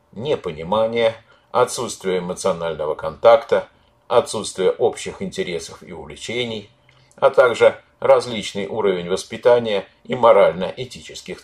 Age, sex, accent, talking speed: 50-69, male, native, 85 wpm